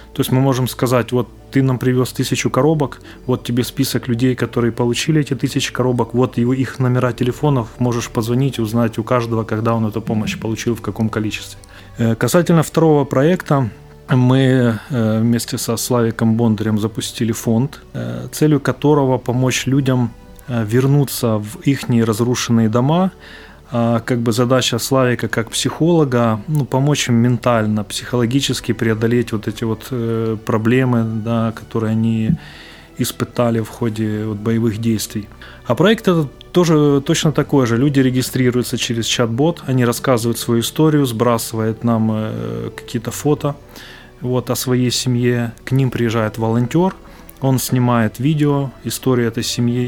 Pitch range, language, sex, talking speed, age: 115-130 Hz, Ukrainian, male, 140 wpm, 20-39